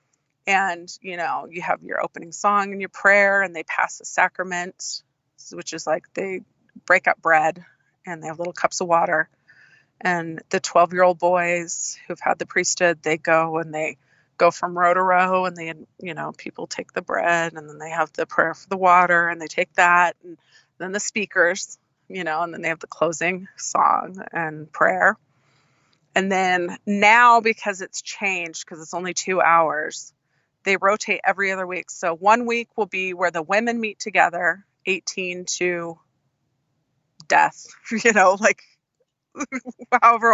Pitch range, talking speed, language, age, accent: 165-200 Hz, 175 wpm, English, 30-49, American